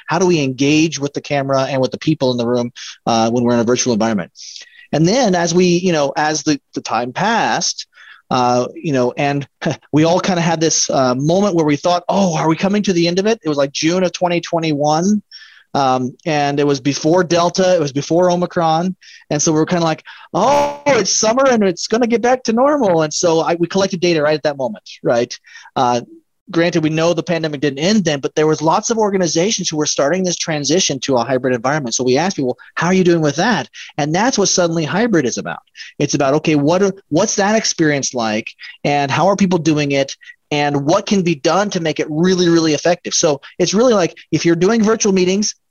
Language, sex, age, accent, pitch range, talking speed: English, male, 30-49, American, 150-185 Hz, 230 wpm